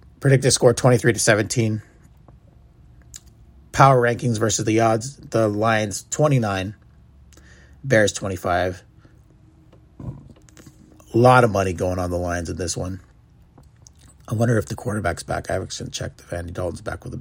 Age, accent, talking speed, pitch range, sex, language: 30-49, American, 145 wpm, 95-120 Hz, male, English